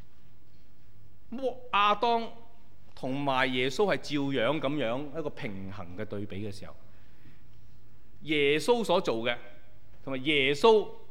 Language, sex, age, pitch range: Chinese, male, 30-49, 115-195 Hz